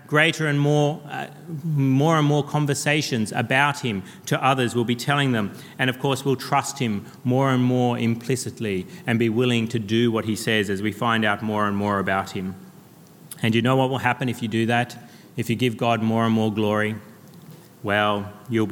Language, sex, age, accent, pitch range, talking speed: English, male, 30-49, Australian, 105-130 Hz, 200 wpm